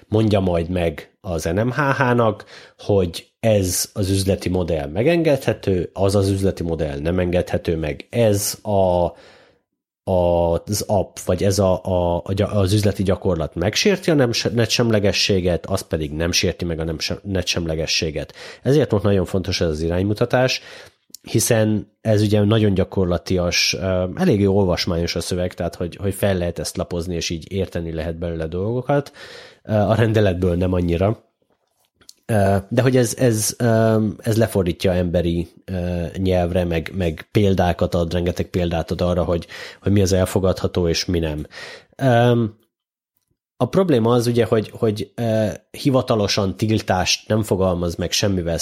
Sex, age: male, 30-49